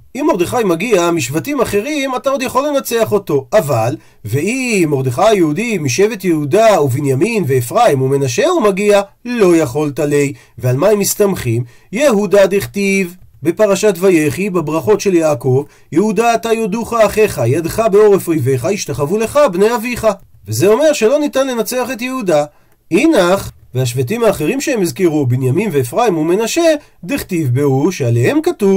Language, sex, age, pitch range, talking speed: Hebrew, male, 40-59, 145-220 Hz, 125 wpm